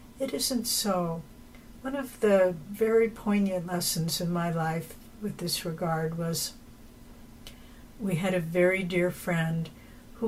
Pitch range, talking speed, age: 170-205 Hz, 135 wpm, 60-79